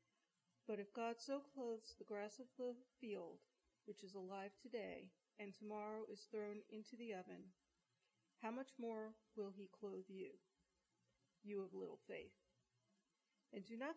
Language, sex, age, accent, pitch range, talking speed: English, female, 50-69, American, 205-245 Hz, 150 wpm